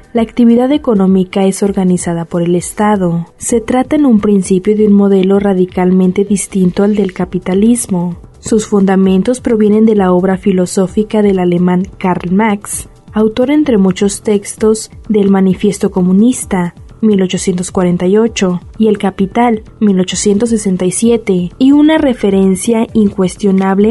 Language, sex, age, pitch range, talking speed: Spanish, female, 20-39, 195-230 Hz, 120 wpm